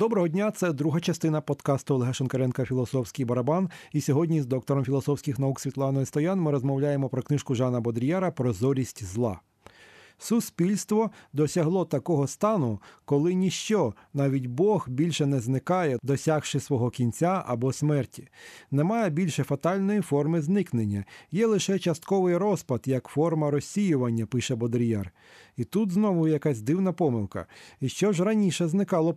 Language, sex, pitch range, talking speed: Ukrainian, male, 130-170 Hz, 140 wpm